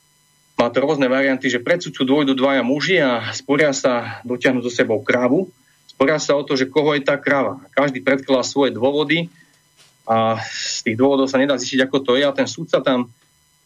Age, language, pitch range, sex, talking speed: 30-49, Slovak, 125-150 Hz, male, 205 wpm